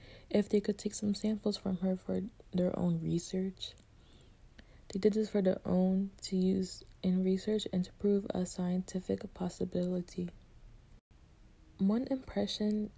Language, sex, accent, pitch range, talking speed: English, female, American, 180-200 Hz, 140 wpm